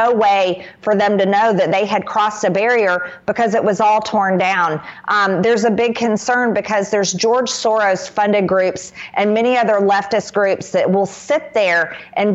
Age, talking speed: 40-59, 185 wpm